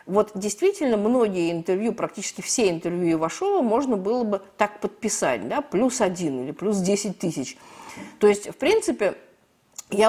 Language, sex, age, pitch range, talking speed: Russian, female, 50-69, 180-245 Hz, 150 wpm